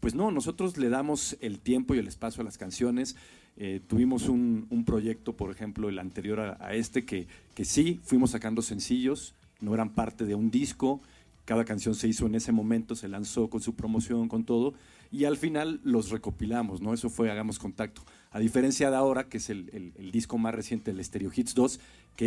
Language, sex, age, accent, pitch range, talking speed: Spanish, male, 40-59, Mexican, 105-125 Hz, 210 wpm